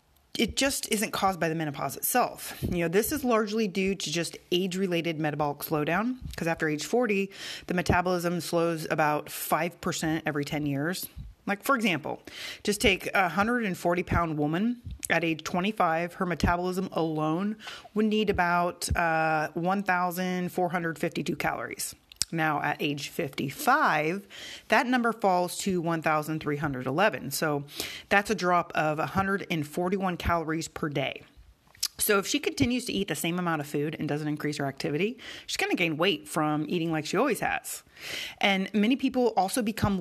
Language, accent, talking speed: English, American, 155 wpm